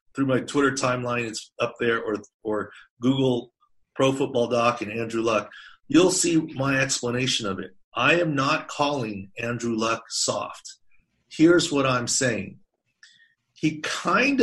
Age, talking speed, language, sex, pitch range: 40-59, 145 wpm, English, male, 125-165 Hz